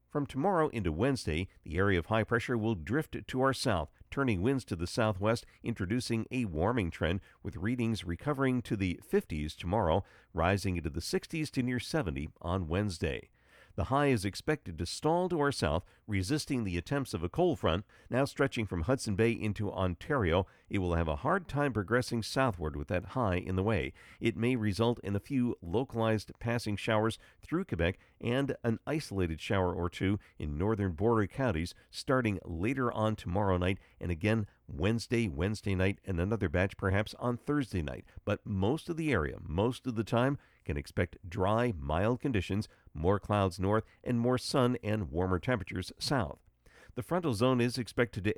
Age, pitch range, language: 50-69, 90-120 Hz, English